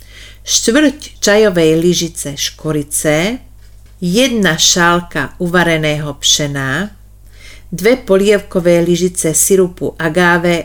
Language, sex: Slovak, female